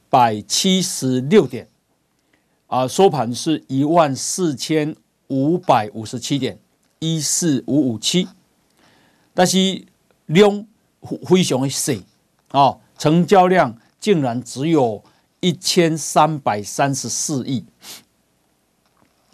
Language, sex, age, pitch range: Chinese, male, 50-69, 130-180 Hz